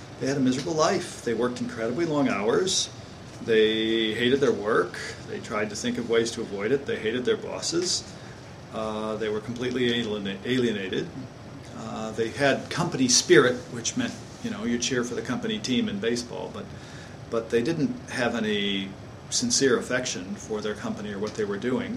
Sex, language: male, Japanese